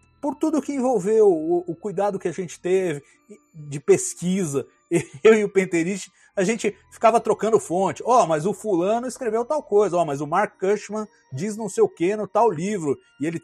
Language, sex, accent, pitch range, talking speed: Portuguese, male, Brazilian, 140-210 Hz, 205 wpm